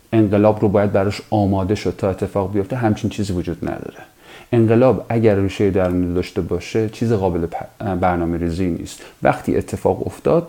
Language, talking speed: English, 150 wpm